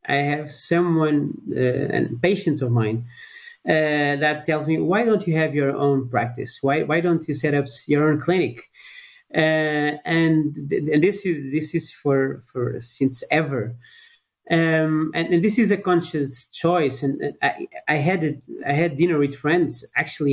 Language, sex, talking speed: English, male, 175 wpm